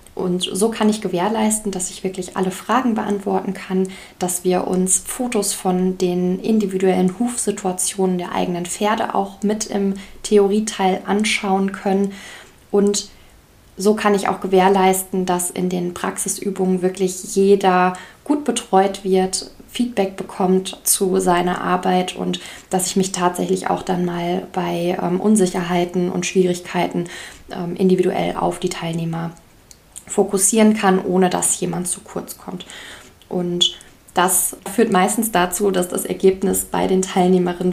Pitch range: 180-195 Hz